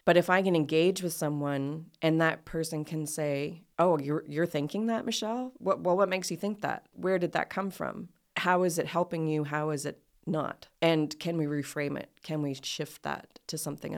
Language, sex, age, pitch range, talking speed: English, female, 30-49, 150-175 Hz, 210 wpm